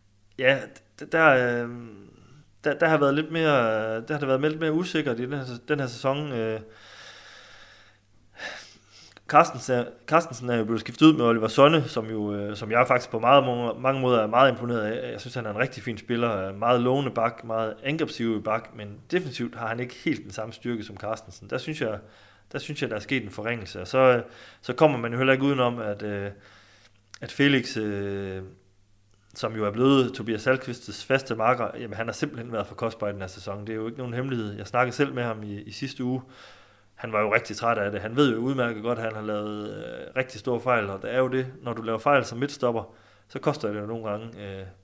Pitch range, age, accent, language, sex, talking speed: 105-130 Hz, 30-49, native, Danish, male, 220 wpm